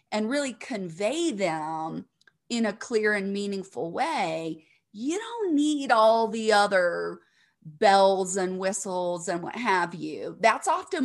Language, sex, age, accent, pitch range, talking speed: English, female, 30-49, American, 195-265 Hz, 135 wpm